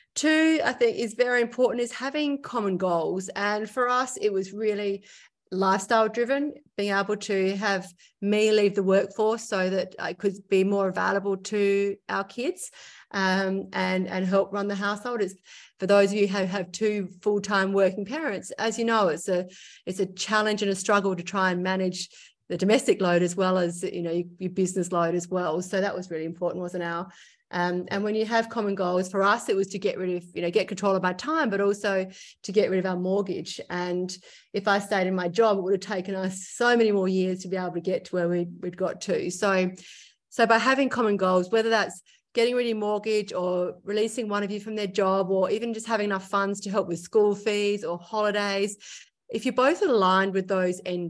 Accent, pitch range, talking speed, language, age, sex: Australian, 185-215 Hz, 220 wpm, English, 30-49, female